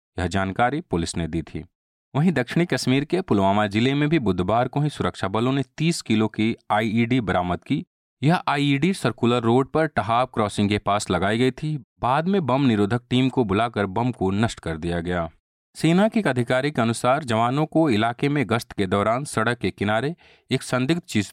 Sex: male